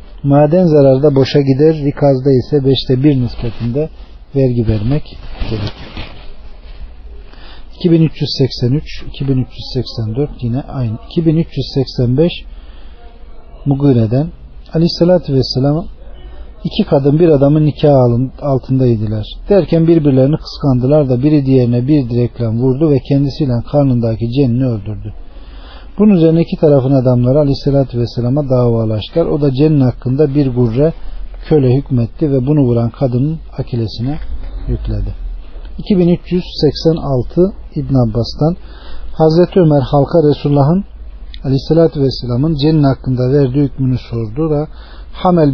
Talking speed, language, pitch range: 105 wpm, Turkish, 120-150 Hz